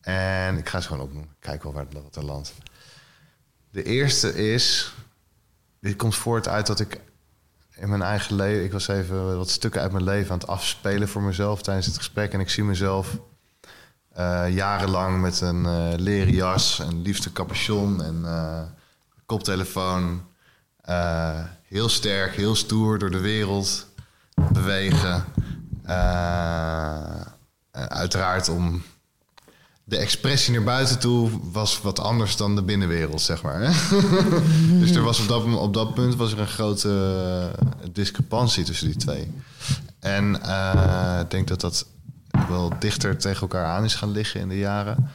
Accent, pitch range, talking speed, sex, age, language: Dutch, 90-110 Hz, 150 wpm, male, 20-39, Dutch